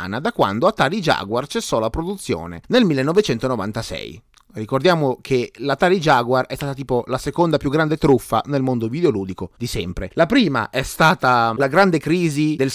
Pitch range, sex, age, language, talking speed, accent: 135-195 Hz, male, 30-49, Italian, 160 wpm, native